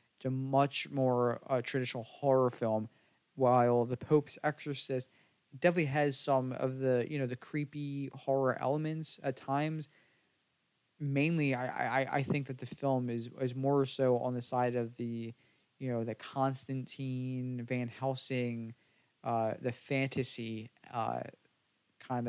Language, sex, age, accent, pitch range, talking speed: English, male, 20-39, American, 125-145 Hz, 140 wpm